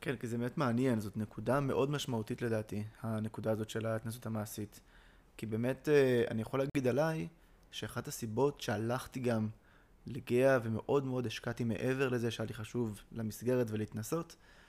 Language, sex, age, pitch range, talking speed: Hebrew, male, 20-39, 110-130 Hz, 145 wpm